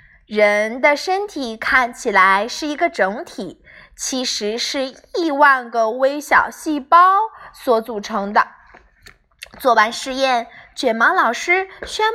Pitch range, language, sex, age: 235-340 Hz, Chinese, female, 20-39